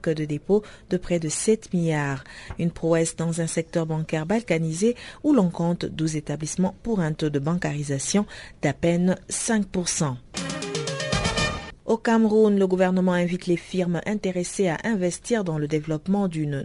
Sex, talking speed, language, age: female, 150 wpm, French, 40-59